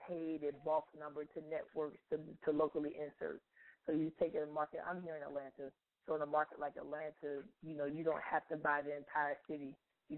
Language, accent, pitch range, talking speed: English, American, 140-155 Hz, 210 wpm